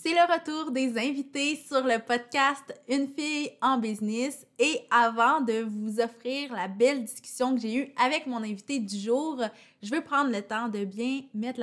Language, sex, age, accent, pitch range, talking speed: French, female, 20-39, Canadian, 215-270 Hz, 195 wpm